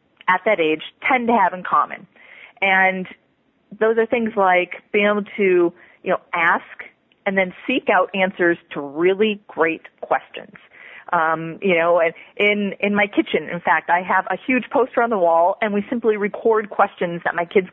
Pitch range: 180-225 Hz